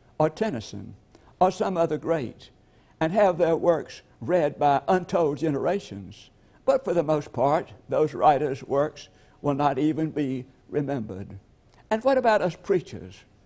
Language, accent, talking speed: English, American, 145 wpm